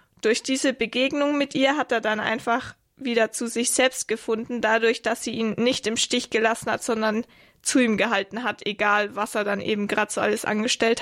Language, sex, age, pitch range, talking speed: German, female, 20-39, 220-255 Hz, 200 wpm